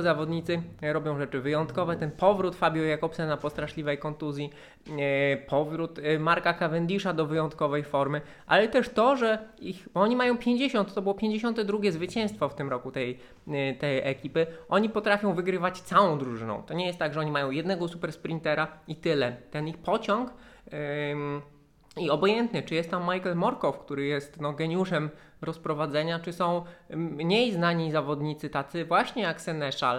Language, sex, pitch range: Polish, male, 135-175 Hz